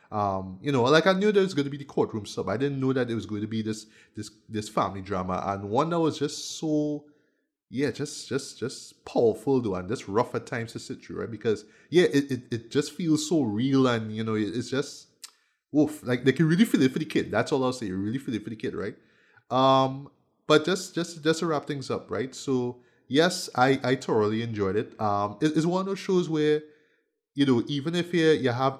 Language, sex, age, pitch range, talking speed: English, male, 20-39, 110-145 Hz, 245 wpm